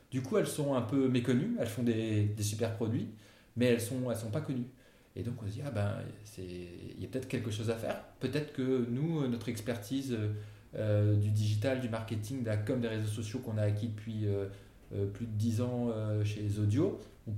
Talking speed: 220 wpm